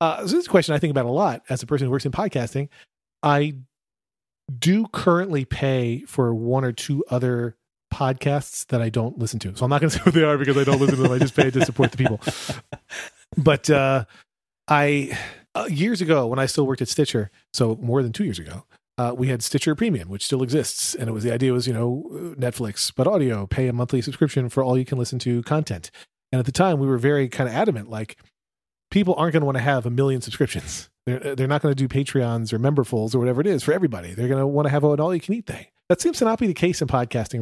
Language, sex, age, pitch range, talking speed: English, male, 40-59, 120-150 Hz, 250 wpm